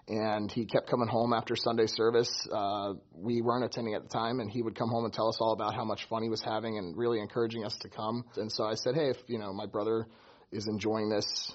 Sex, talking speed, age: male, 265 wpm, 30-49